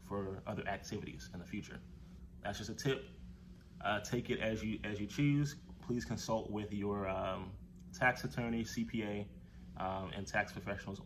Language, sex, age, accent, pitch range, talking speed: English, male, 20-39, American, 95-120 Hz, 165 wpm